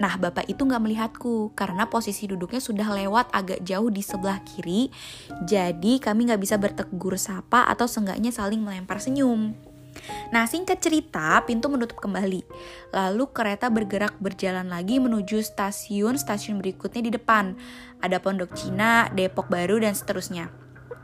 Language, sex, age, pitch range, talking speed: Indonesian, female, 20-39, 195-240 Hz, 140 wpm